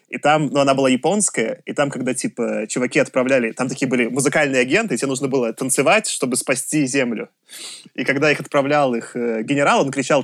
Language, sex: Russian, male